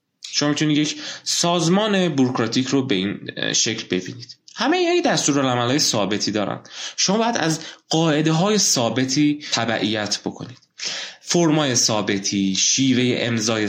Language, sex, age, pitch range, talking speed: Persian, male, 20-39, 115-170 Hz, 125 wpm